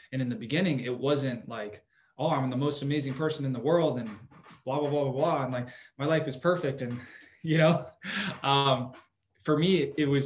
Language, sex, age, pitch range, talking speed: English, male, 20-39, 120-150 Hz, 210 wpm